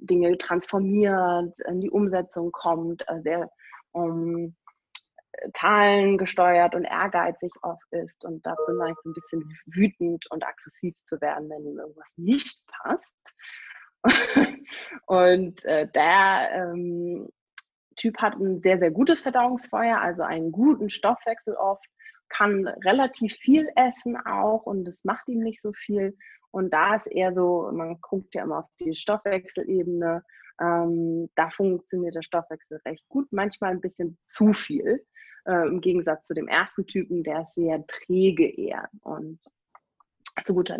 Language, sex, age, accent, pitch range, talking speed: German, female, 20-39, German, 170-215 Hz, 145 wpm